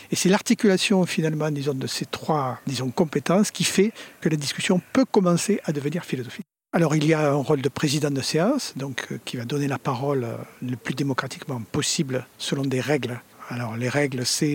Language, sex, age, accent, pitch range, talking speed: French, male, 50-69, French, 140-175 Hz, 195 wpm